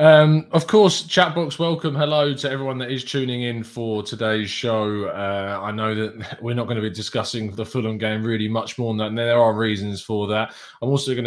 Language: English